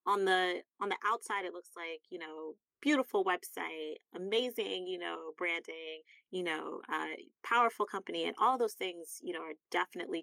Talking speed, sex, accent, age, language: 170 wpm, female, American, 30-49, English